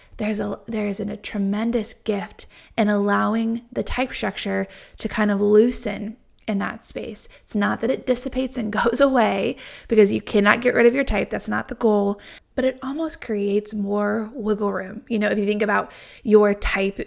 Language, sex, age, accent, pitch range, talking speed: English, female, 20-39, American, 200-230 Hz, 190 wpm